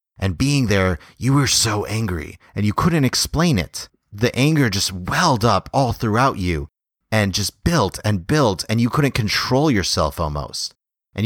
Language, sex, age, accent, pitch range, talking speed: English, male, 30-49, American, 90-115 Hz, 170 wpm